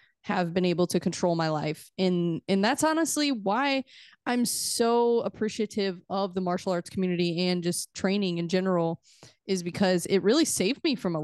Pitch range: 175-215 Hz